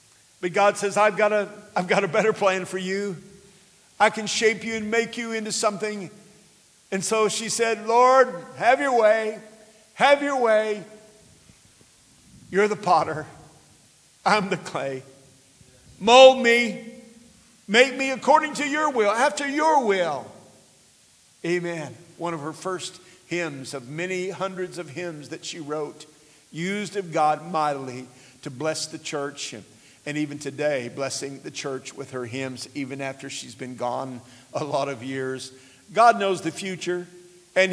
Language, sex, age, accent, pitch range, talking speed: English, male, 50-69, American, 150-210 Hz, 150 wpm